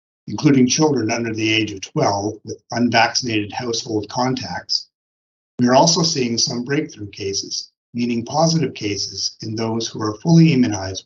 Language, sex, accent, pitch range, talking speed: English, male, American, 105-130 Hz, 145 wpm